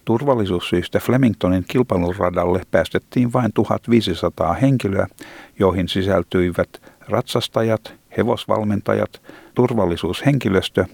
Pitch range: 90-120 Hz